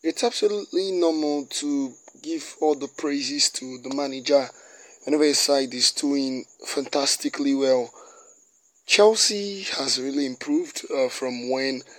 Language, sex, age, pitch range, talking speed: English, male, 20-39, 135-180 Hz, 125 wpm